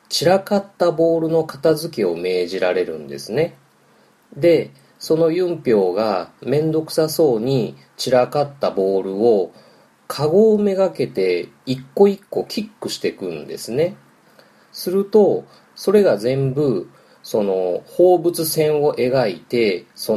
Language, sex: Japanese, male